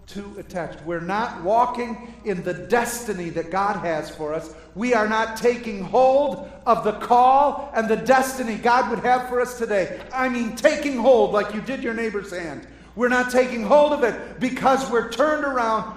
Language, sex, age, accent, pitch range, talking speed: English, male, 50-69, American, 180-245 Hz, 190 wpm